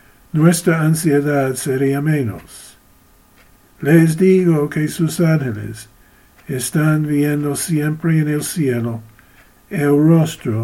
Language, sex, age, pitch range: English, male, 60-79, 115-145 Hz